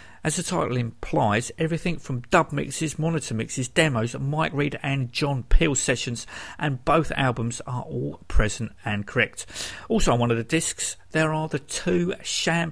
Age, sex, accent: 50-69, male, British